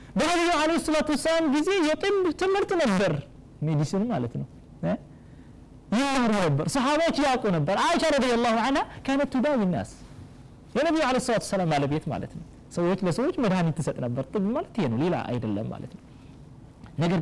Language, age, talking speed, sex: Amharic, 30-49, 155 wpm, male